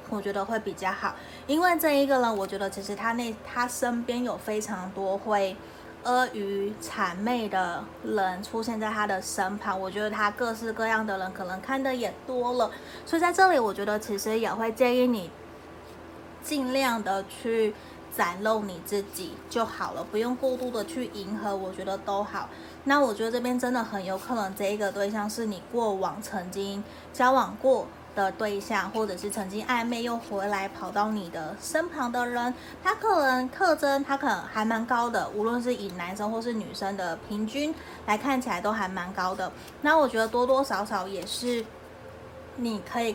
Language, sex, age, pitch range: Chinese, female, 20-39, 195-245 Hz